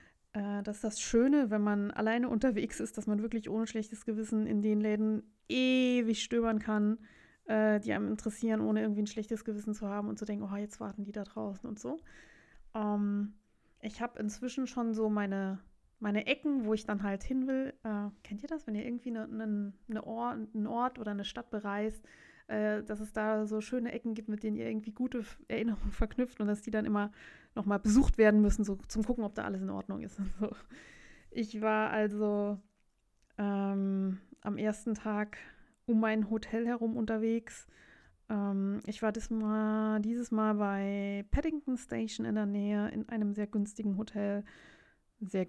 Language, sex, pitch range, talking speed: German, female, 205-225 Hz, 175 wpm